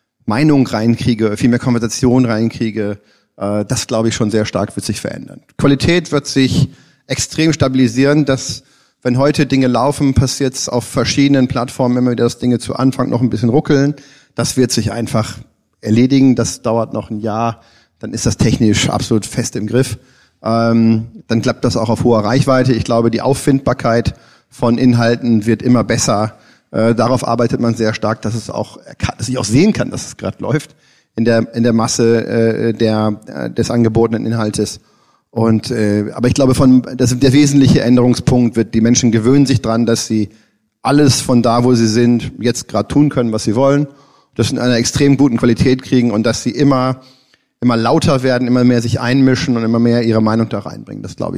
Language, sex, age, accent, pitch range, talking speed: German, male, 40-59, German, 115-130 Hz, 190 wpm